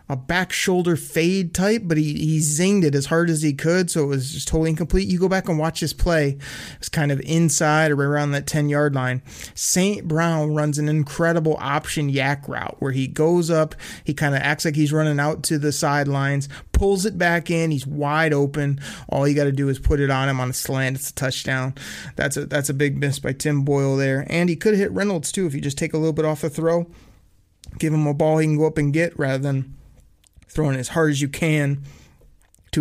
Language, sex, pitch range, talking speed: English, male, 140-160 Hz, 235 wpm